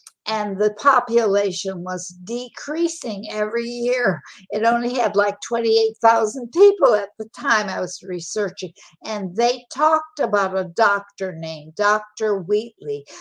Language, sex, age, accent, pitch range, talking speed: English, female, 60-79, American, 185-235 Hz, 125 wpm